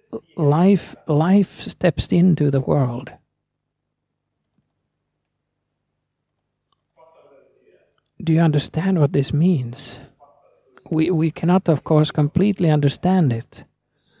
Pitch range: 145-175 Hz